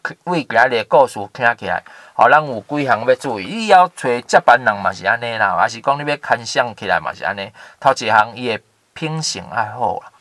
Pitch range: 115-155 Hz